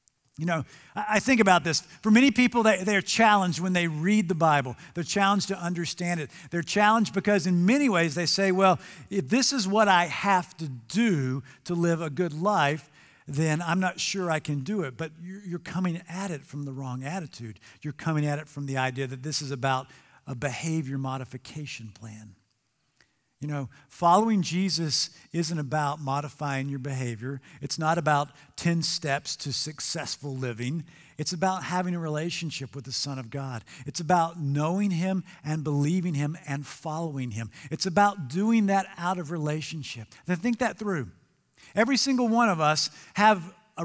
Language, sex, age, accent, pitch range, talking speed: English, male, 50-69, American, 145-195 Hz, 180 wpm